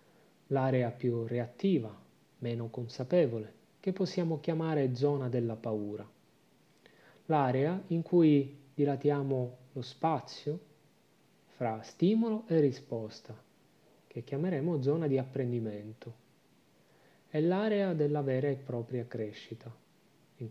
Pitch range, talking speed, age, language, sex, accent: 120-160 Hz, 100 wpm, 30-49, Italian, male, native